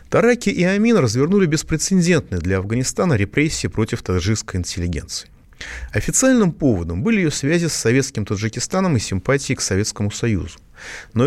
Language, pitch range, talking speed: Russian, 100-165 Hz, 135 wpm